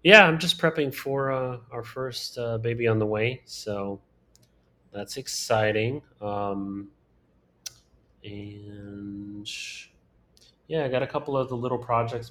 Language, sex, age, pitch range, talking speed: English, male, 30-49, 100-115 Hz, 130 wpm